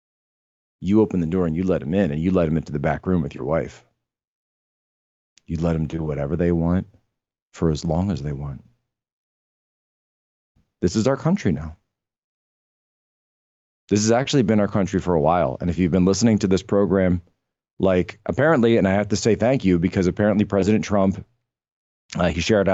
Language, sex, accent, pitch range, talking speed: English, male, American, 85-105 Hz, 185 wpm